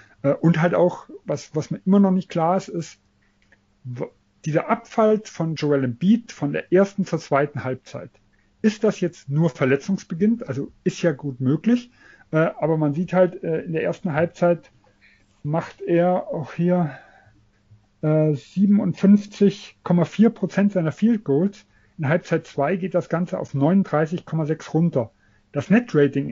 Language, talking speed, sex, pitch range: German, 145 wpm, male, 140-185 Hz